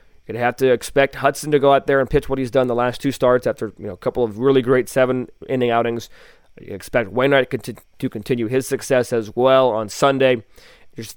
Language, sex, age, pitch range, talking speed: English, male, 20-39, 115-140 Hz, 220 wpm